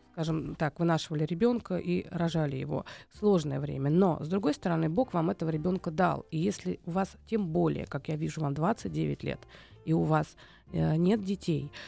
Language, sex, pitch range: Russian, female, 165-215 Hz